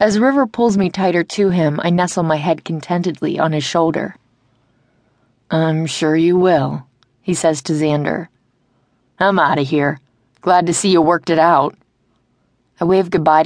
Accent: American